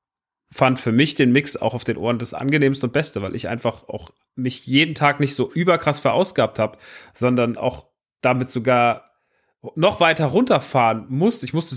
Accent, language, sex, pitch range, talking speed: German, German, male, 115-135 Hz, 180 wpm